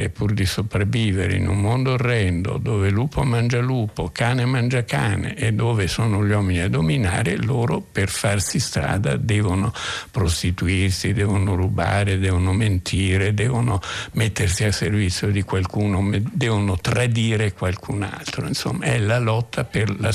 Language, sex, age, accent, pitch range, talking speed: Italian, male, 60-79, native, 95-120 Hz, 140 wpm